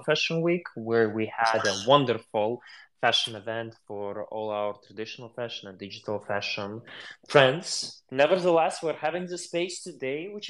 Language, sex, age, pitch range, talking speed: English, male, 20-39, 115-155 Hz, 145 wpm